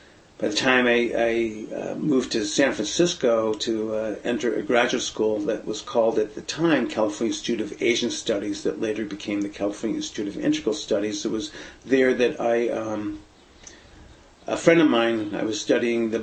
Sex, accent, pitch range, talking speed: male, American, 100-120 Hz, 180 wpm